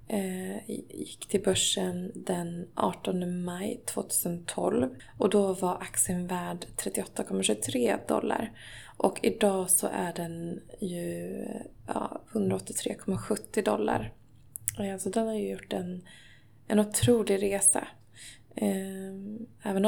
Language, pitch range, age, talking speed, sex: Swedish, 170-210 Hz, 20-39, 100 wpm, female